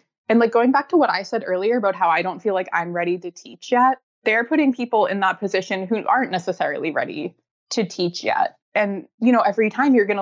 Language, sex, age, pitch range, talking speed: English, female, 20-39, 180-225 Hz, 235 wpm